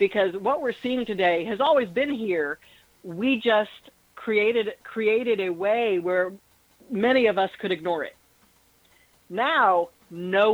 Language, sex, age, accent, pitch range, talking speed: English, female, 50-69, American, 180-250 Hz, 135 wpm